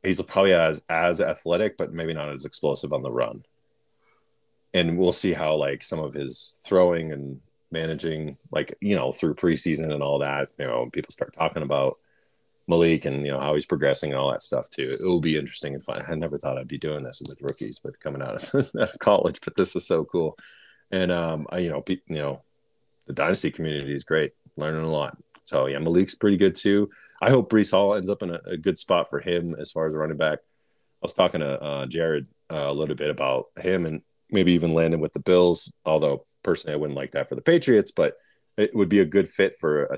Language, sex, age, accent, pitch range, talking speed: English, male, 30-49, American, 75-90 Hz, 230 wpm